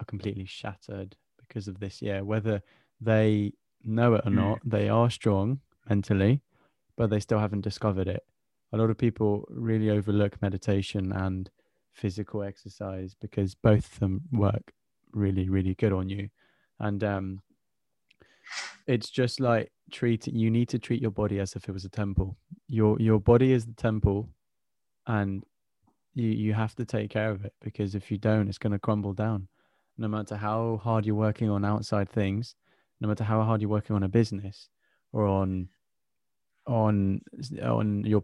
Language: English